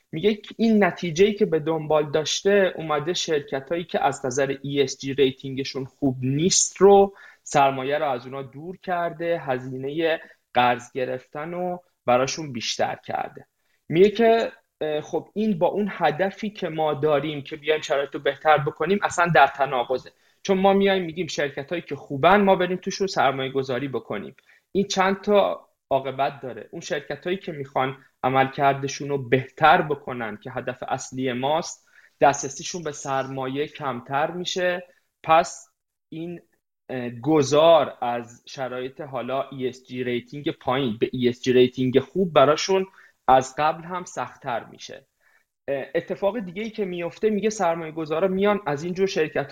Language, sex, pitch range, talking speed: Persian, male, 135-180 Hz, 145 wpm